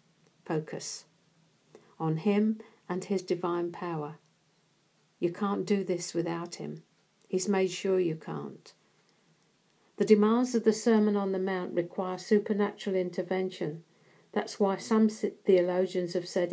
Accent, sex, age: British, female, 50-69